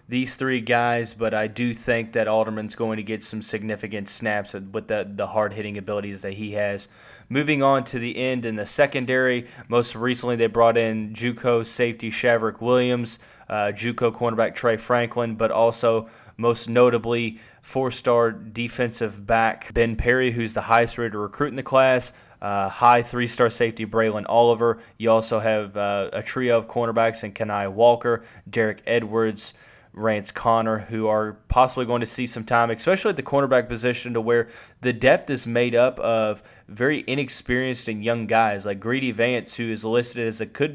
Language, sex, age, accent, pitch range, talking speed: English, male, 20-39, American, 110-120 Hz, 175 wpm